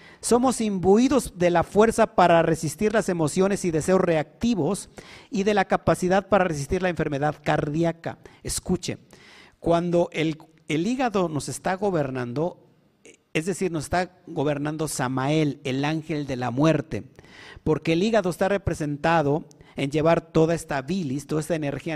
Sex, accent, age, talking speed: male, Mexican, 50-69, 145 wpm